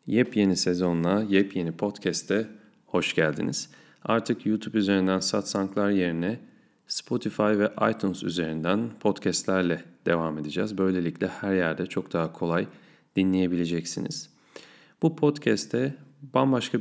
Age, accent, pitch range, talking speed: 40-59, native, 90-110 Hz, 100 wpm